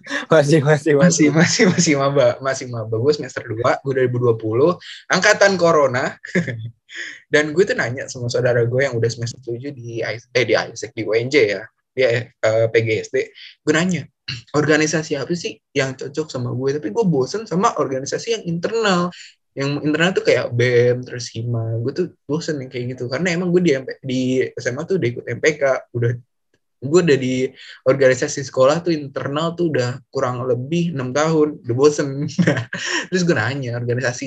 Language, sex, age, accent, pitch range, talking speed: Indonesian, male, 20-39, native, 120-160 Hz, 165 wpm